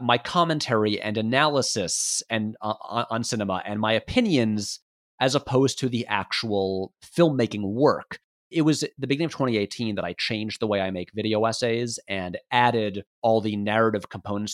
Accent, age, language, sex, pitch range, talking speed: American, 30-49, English, male, 100-135 Hz, 165 wpm